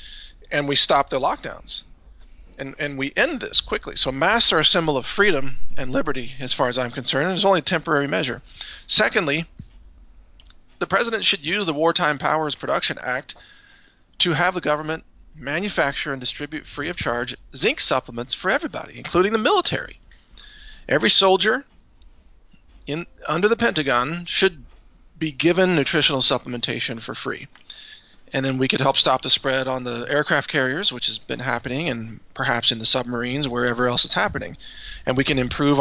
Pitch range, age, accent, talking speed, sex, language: 125-160 Hz, 40-59, American, 170 wpm, male, English